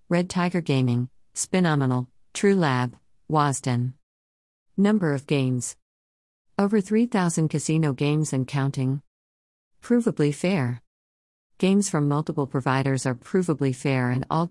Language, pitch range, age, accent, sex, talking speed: English, 105-165 Hz, 50-69, American, female, 110 wpm